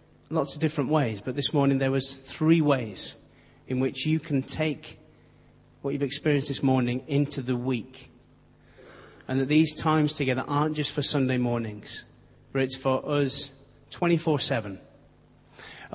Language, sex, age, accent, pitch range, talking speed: English, male, 30-49, British, 125-150 Hz, 145 wpm